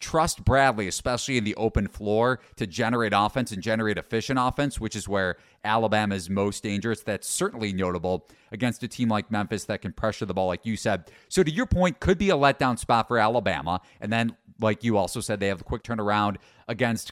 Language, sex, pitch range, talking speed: English, male, 105-125 Hz, 210 wpm